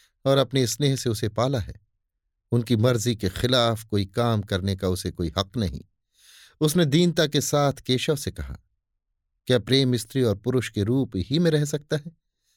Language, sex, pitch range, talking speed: Hindi, male, 95-130 Hz, 180 wpm